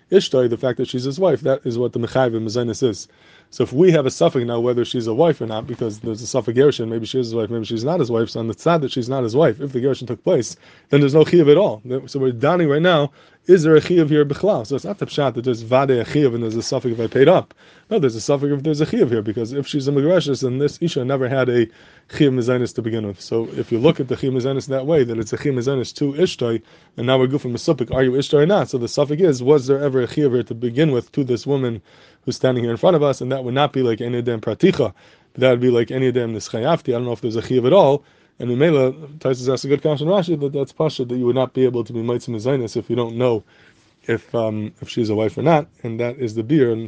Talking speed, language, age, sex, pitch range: 290 wpm, English, 20-39, male, 120-145 Hz